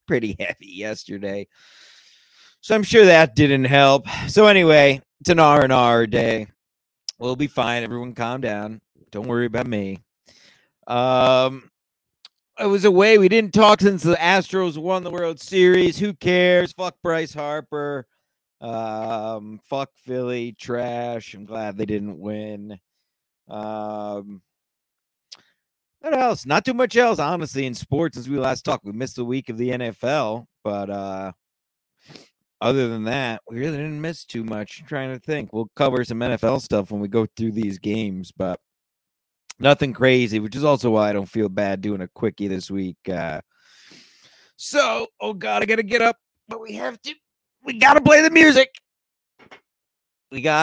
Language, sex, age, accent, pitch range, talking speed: English, male, 50-69, American, 110-160 Hz, 160 wpm